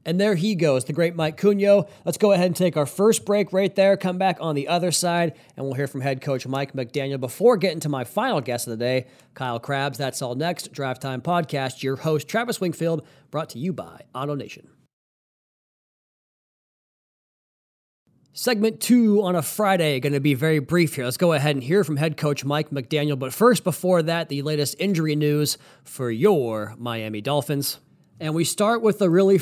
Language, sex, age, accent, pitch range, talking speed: English, male, 30-49, American, 135-170 Hz, 200 wpm